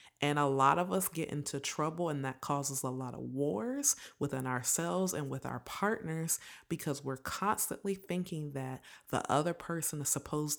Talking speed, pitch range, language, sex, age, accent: 175 wpm, 135-165 Hz, English, female, 30-49, American